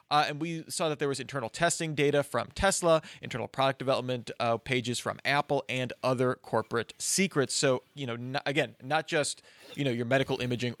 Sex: male